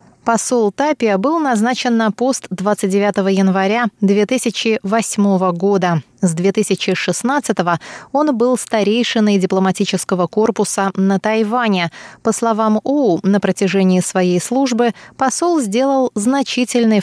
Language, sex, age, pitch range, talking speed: Russian, female, 20-39, 190-235 Hz, 100 wpm